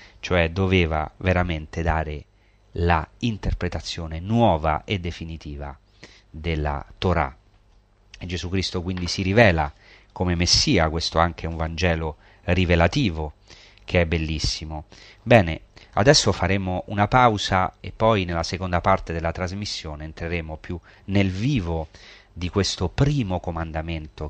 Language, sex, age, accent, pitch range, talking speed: Italian, male, 30-49, native, 85-105 Hz, 120 wpm